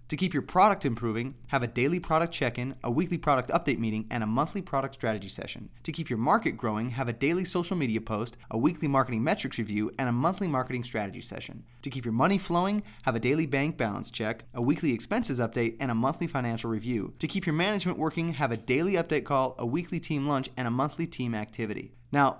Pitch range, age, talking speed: 120-165 Hz, 20-39, 220 wpm